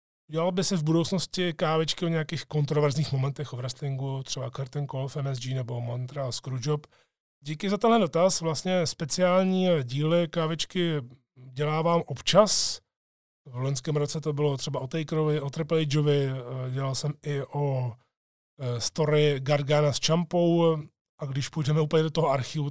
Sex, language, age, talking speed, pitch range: male, Czech, 20-39, 150 wpm, 135-160 Hz